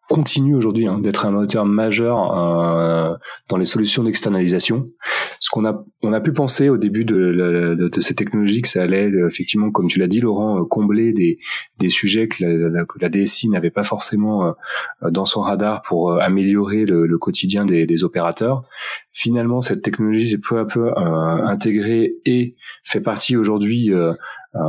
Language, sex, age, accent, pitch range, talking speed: French, male, 30-49, French, 90-115 Hz, 175 wpm